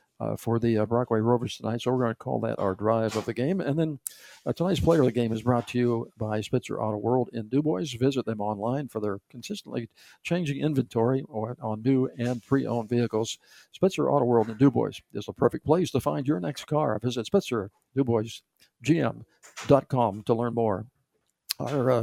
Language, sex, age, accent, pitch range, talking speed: English, male, 60-79, American, 110-130 Hz, 195 wpm